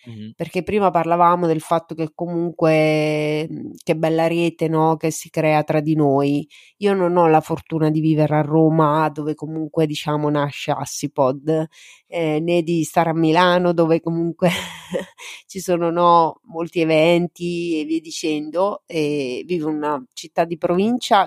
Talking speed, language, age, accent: 150 wpm, Italian, 30-49, native